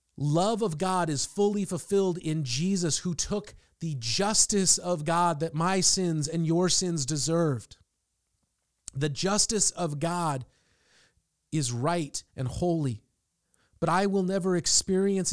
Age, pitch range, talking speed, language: 30-49, 110-175 Hz, 135 wpm, English